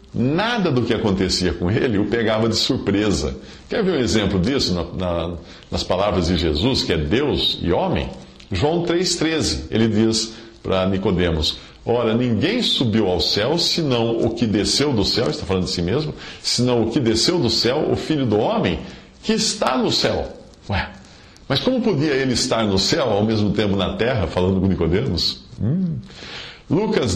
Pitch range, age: 90-120 Hz, 50-69